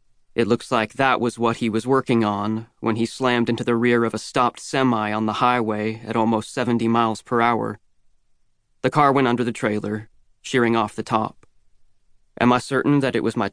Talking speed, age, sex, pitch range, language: 205 wpm, 30-49, male, 115-130 Hz, English